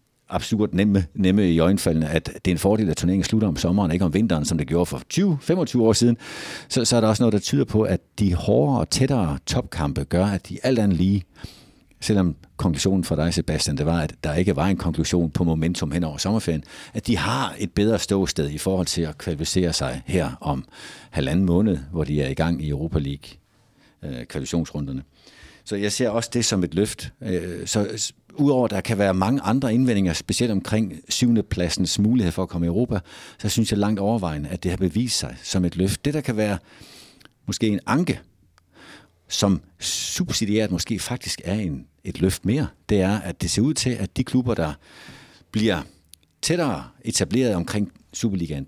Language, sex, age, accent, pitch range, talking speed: Danish, male, 60-79, native, 85-110 Hz, 195 wpm